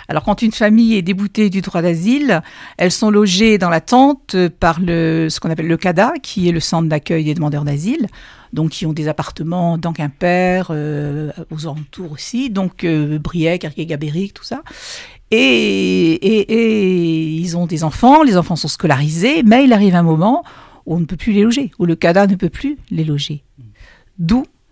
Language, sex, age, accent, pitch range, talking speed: French, female, 50-69, French, 160-215 Hz, 195 wpm